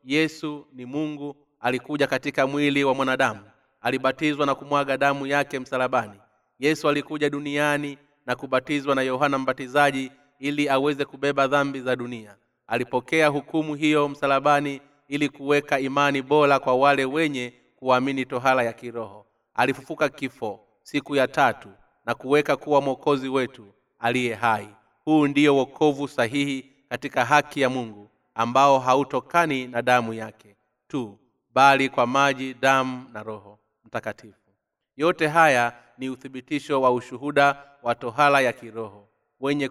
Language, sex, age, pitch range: Swahili, male, 30-49, 125-145 Hz